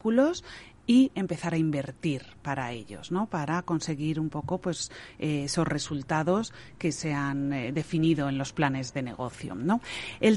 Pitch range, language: 140-175 Hz, Spanish